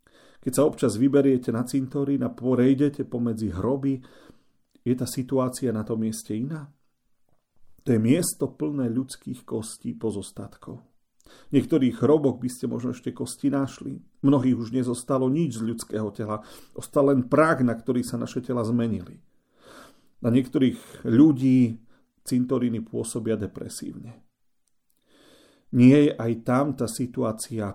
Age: 40-59